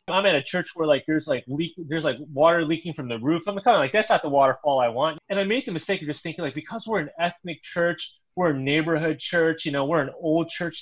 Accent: American